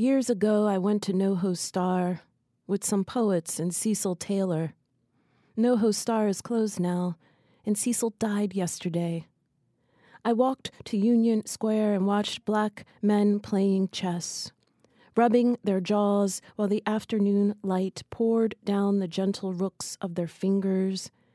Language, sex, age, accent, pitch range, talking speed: English, female, 30-49, American, 185-220 Hz, 135 wpm